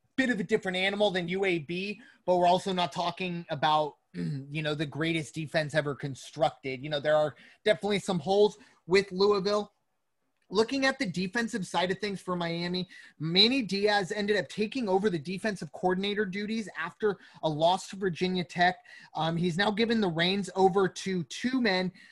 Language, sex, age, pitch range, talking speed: English, male, 30-49, 165-200 Hz, 170 wpm